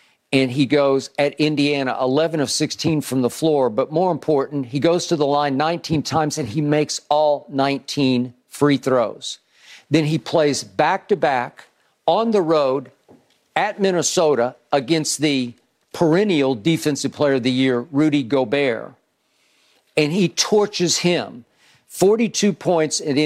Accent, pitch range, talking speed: American, 140-180 Hz, 145 wpm